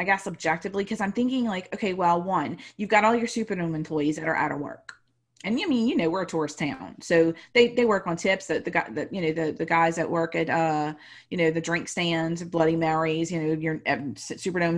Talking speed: 245 wpm